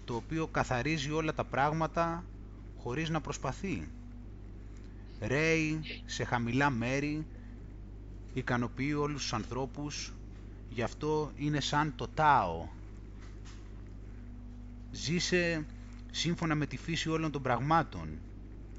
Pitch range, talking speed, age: 105-145 Hz, 100 wpm, 30-49